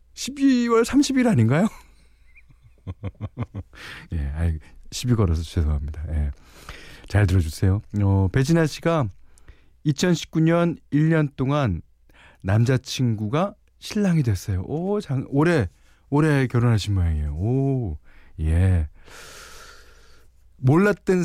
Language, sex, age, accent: Korean, male, 40-59, native